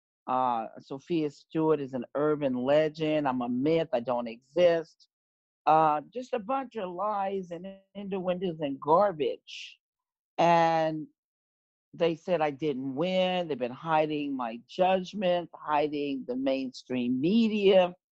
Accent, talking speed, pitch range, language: American, 130 wpm, 145-195 Hz, English